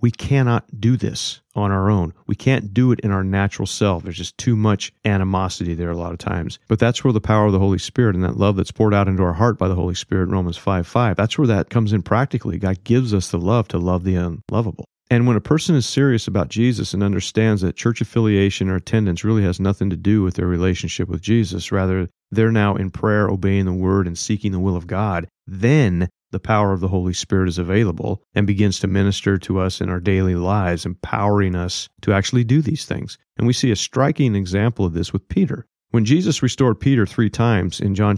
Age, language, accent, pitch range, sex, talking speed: 40-59, English, American, 95-115 Hz, male, 235 wpm